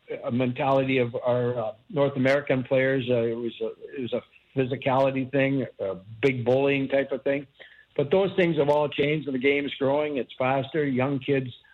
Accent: American